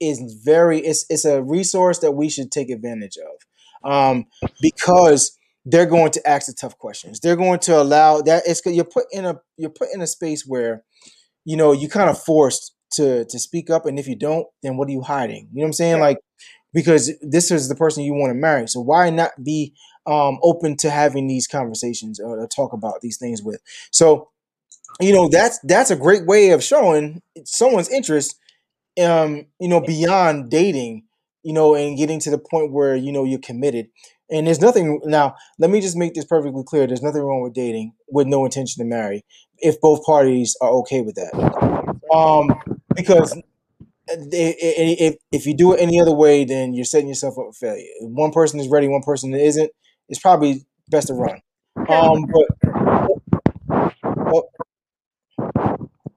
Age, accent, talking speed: 20-39, American, 190 wpm